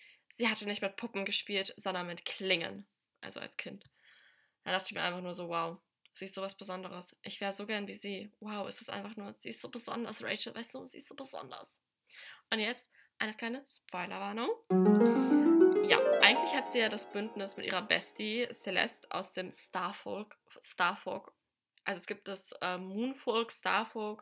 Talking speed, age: 180 wpm, 10-29